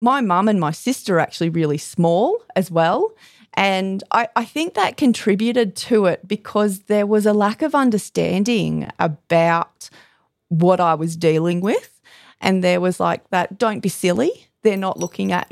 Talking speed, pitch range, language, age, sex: 170 wpm, 155-210 Hz, English, 30-49, female